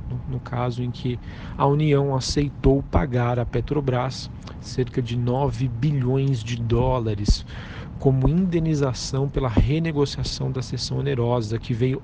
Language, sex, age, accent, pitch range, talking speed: Portuguese, male, 40-59, Brazilian, 120-135 Hz, 125 wpm